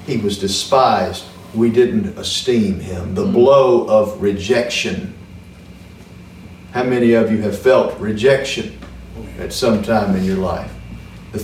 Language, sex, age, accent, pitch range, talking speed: English, male, 50-69, American, 135-205 Hz, 130 wpm